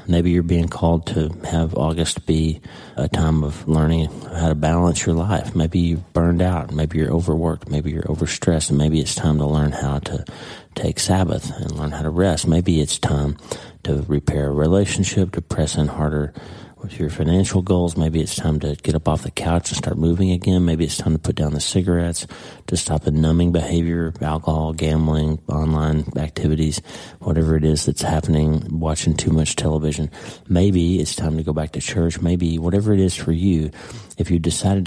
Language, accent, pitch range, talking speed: English, American, 80-90 Hz, 195 wpm